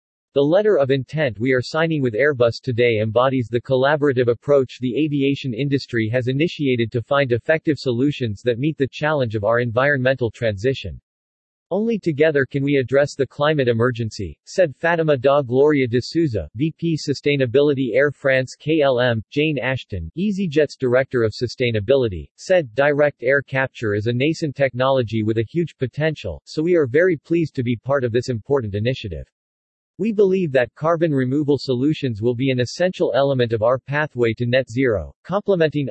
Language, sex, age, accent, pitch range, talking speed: English, male, 40-59, American, 120-150 Hz, 165 wpm